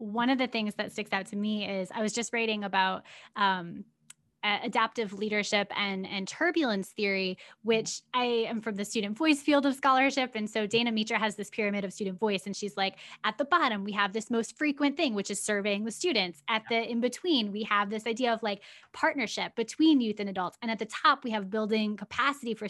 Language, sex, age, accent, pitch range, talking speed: English, female, 10-29, American, 205-250 Hz, 220 wpm